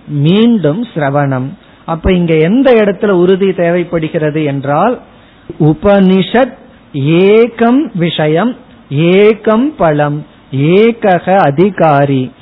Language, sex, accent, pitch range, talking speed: Tamil, male, native, 150-210 Hz, 75 wpm